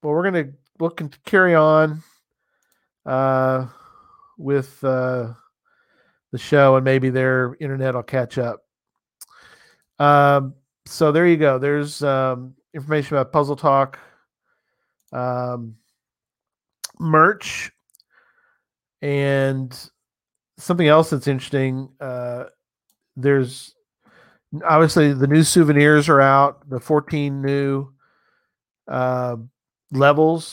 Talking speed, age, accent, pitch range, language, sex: 100 wpm, 40-59, American, 130-150 Hz, English, male